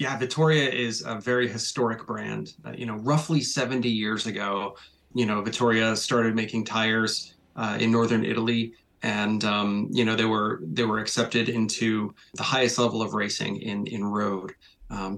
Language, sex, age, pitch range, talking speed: English, male, 30-49, 110-125 Hz, 170 wpm